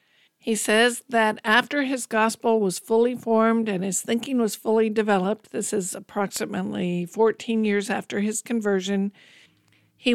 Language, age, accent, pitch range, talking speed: English, 50-69, American, 195-230 Hz, 140 wpm